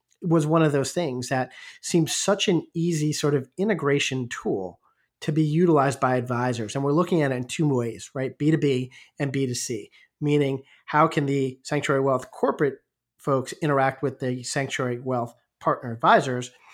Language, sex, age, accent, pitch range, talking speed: English, male, 40-59, American, 130-155 Hz, 180 wpm